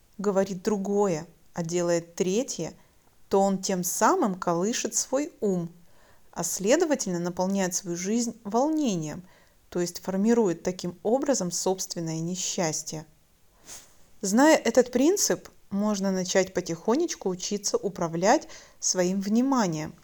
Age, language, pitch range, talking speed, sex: 30-49, Russian, 170-240 Hz, 105 wpm, female